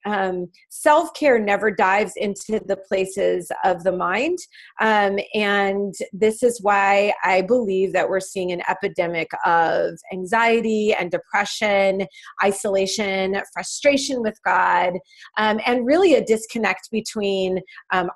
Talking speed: 120 wpm